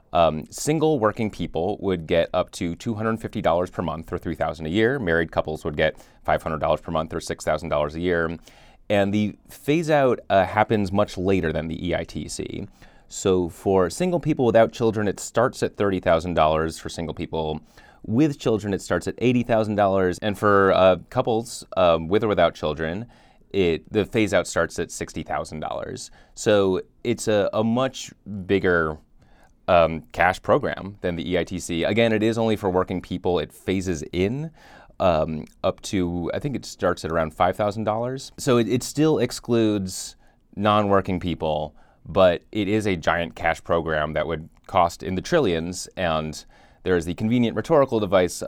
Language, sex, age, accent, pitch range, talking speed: English, male, 30-49, American, 80-110 Hz, 160 wpm